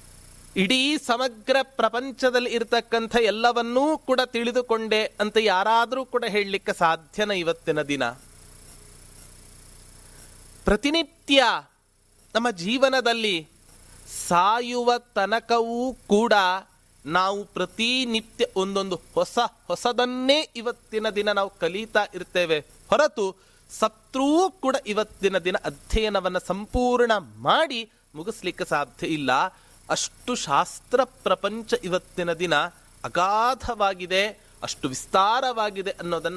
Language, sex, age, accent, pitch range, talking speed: Kannada, male, 30-49, native, 150-240 Hz, 80 wpm